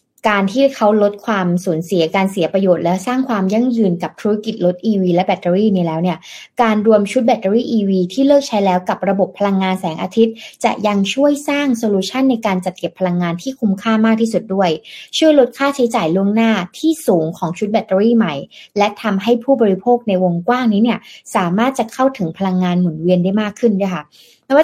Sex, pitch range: female, 185-230 Hz